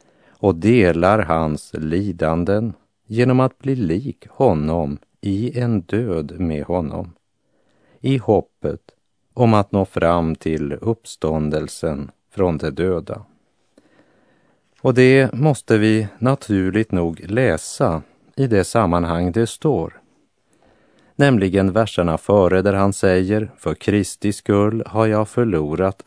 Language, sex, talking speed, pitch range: Italian, male, 115 wpm, 85-110 Hz